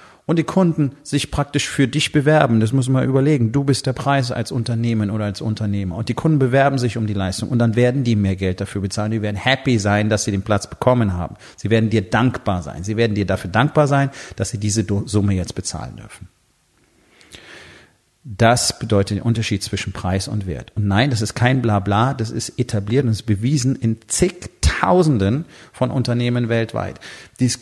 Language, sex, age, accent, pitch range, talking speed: German, male, 40-59, German, 105-140 Hz, 200 wpm